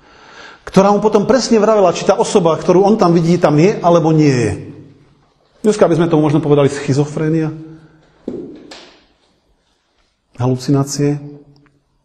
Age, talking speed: 40-59, 125 wpm